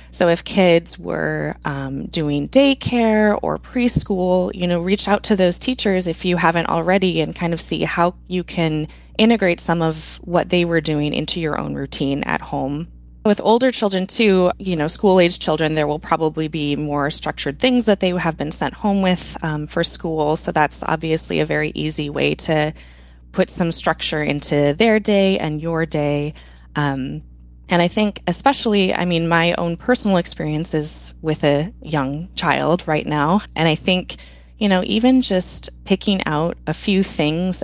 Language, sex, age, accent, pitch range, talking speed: English, female, 20-39, American, 150-190 Hz, 175 wpm